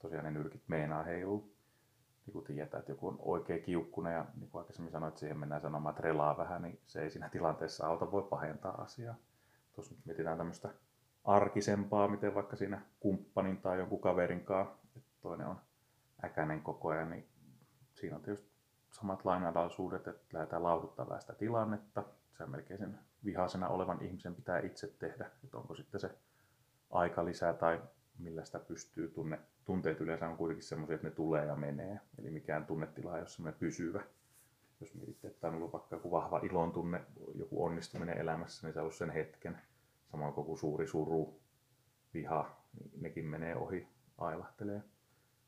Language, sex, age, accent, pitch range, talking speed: Finnish, male, 30-49, native, 80-115 Hz, 170 wpm